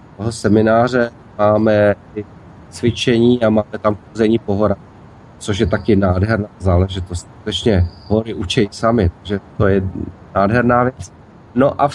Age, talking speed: 30-49, 130 wpm